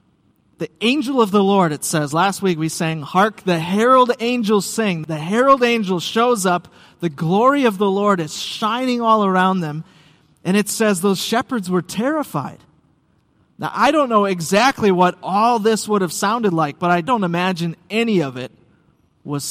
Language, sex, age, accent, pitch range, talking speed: English, male, 30-49, American, 160-210 Hz, 180 wpm